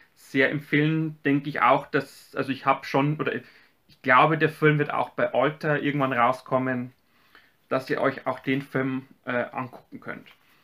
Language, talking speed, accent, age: German, 170 wpm, German, 30-49